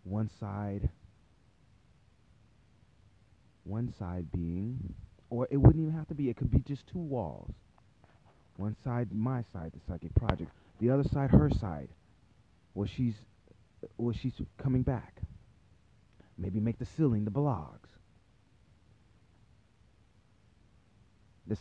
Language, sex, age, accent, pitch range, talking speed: English, male, 30-49, American, 90-115 Hz, 125 wpm